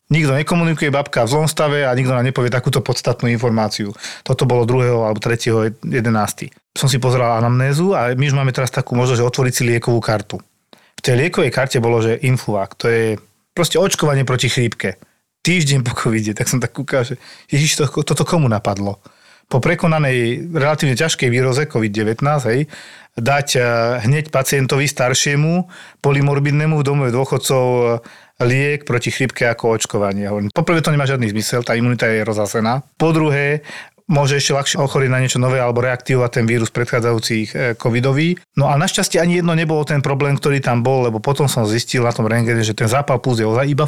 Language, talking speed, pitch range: Slovak, 180 wpm, 120-145 Hz